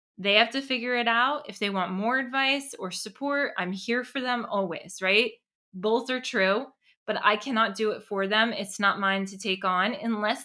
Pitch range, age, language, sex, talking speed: 195-250 Hz, 20-39, English, female, 205 wpm